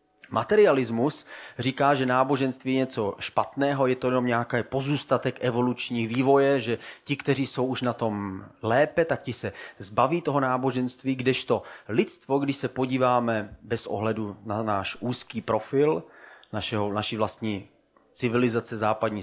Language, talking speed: Czech, 135 wpm